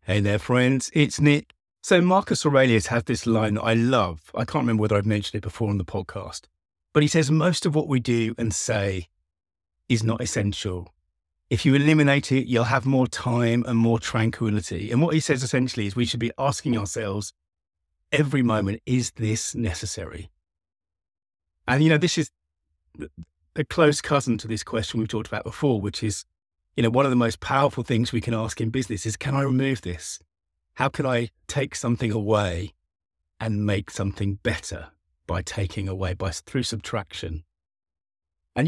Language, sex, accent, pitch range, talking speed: English, male, British, 90-125 Hz, 180 wpm